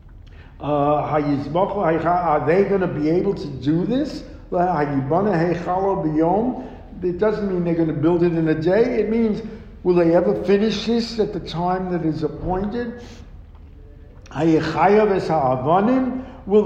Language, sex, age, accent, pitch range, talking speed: English, male, 60-79, American, 155-205 Hz, 125 wpm